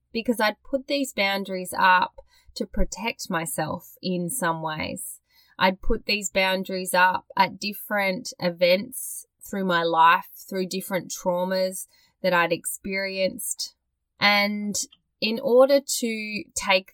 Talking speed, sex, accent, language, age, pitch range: 120 wpm, female, Australian, English, 20-39, 175-210 Hz